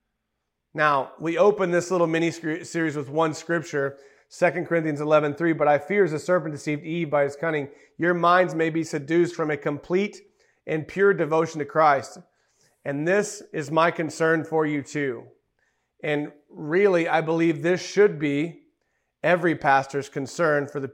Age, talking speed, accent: 40-59, 165 wpm, American